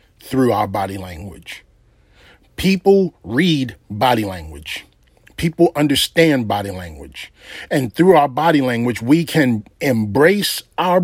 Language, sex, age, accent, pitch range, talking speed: English, male, 40-59, American, 115-170 Hz, 115 wpm